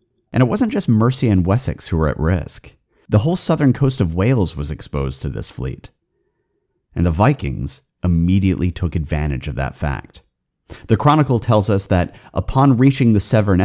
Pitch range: 85-125 Hz